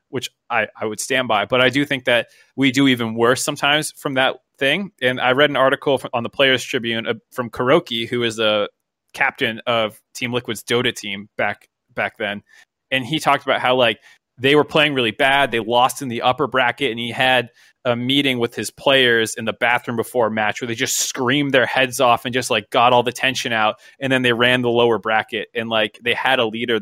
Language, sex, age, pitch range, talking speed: English, male, 20-39, 110-135 Hz, 230 wpm